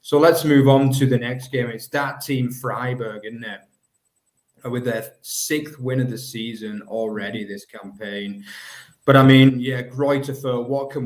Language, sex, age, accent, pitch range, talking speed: English, male, 20-39, British, 115-135 Hz, 170 wpm